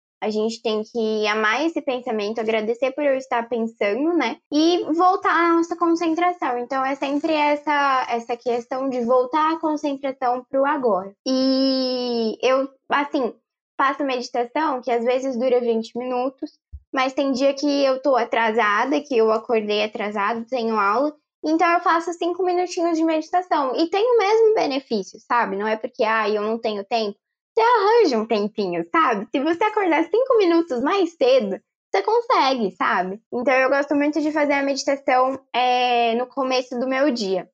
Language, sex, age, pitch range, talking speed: Portuguese, female, 10-29, 230-300 Hz, 165 wpm